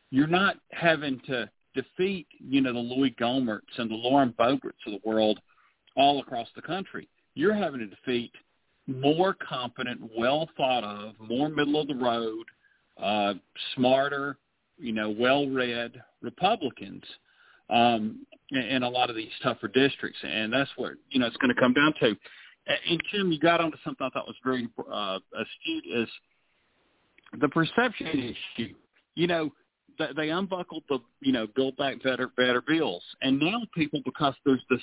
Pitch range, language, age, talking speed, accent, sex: 120-150 Hz, English, 40-59, 165 wpm, American, male